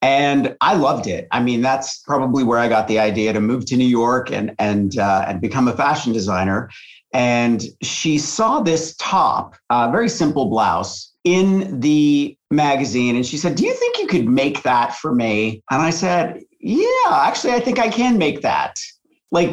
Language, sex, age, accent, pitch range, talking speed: English, male, 50-69, American, 130-170 Hz, 195 wpm